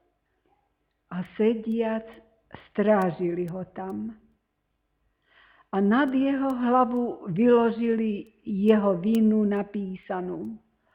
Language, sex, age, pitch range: Slovak, female, 50-69, 200-240 Hz